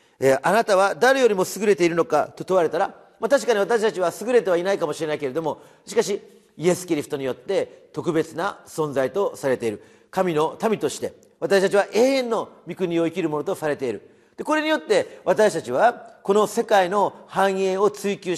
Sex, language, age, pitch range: male, Japanese, 40-59, 185-260 Hz